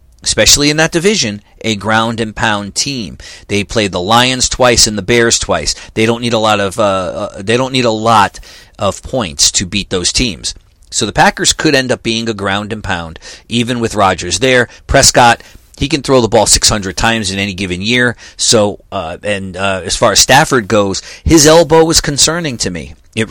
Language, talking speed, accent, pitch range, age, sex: English, 205 wpm, American, 100-130 Hz, 40-59, male